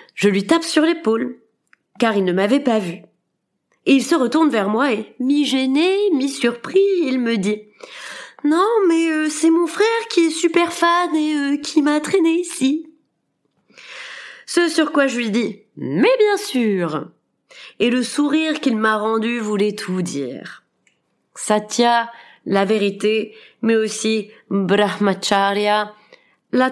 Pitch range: 210-310 Hz